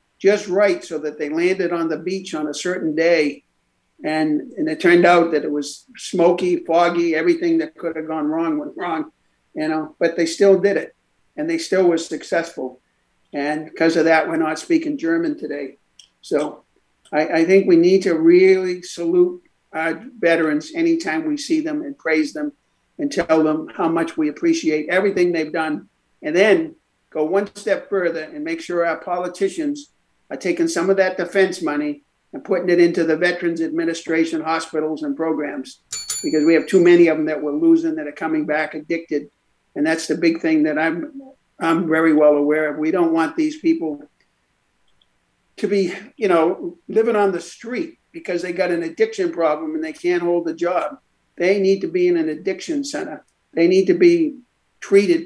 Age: 50-69